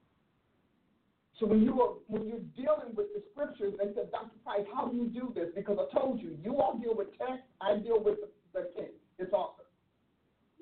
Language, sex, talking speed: English, male, 205 wpm